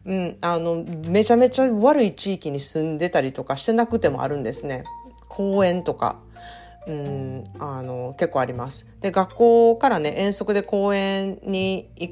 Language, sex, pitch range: Japanese, female, 145-215 Hz